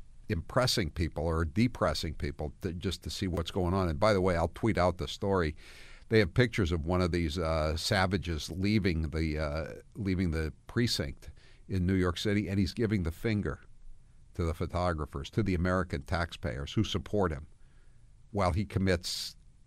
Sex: male